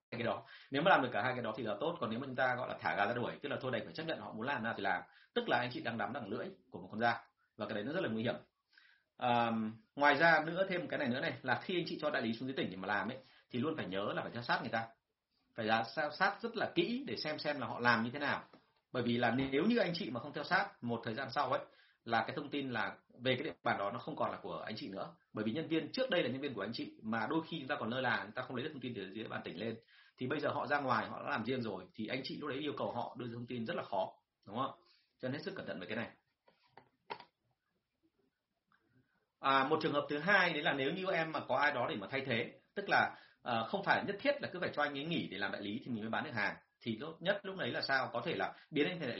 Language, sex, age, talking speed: Vietnamese, male, 30-49, 325 wpm